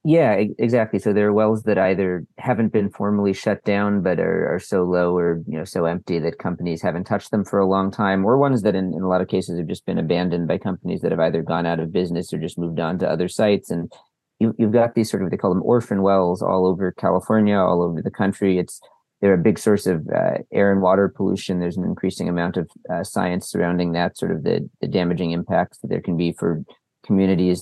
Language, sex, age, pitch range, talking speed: English, male, 40-59, 90-105 Hz, 245 wpm